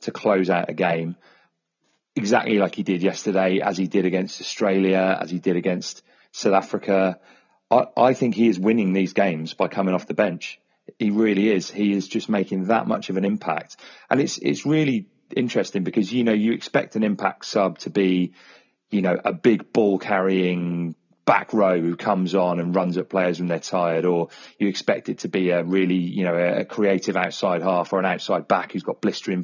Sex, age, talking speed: male, 30-49, 205 wpm